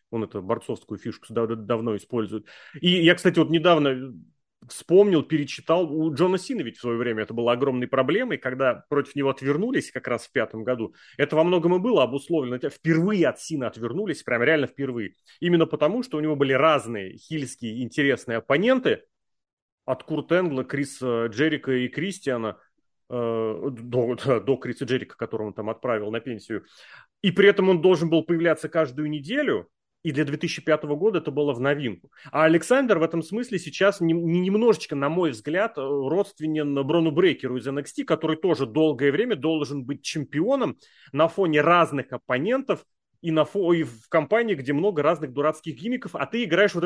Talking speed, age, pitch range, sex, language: 170 wpm, 30-49, 130-175 Hz, male, Russian